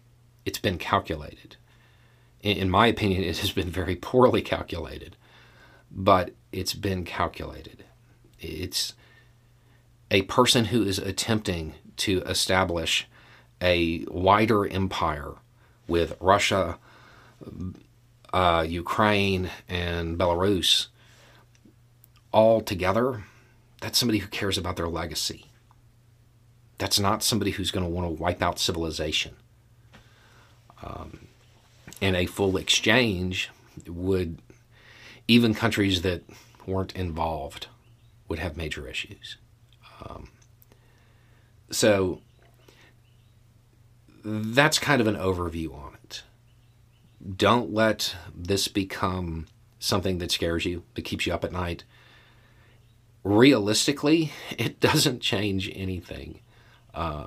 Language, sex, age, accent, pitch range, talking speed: English, male, 40-59, American, 90-120 Hz, 100 wpm